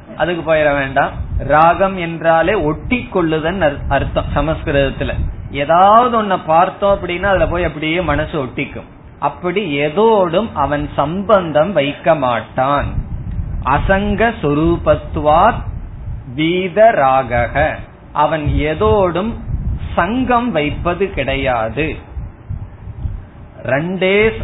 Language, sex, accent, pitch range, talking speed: Tamil, male, native, 140-185 Hz, 70 wpm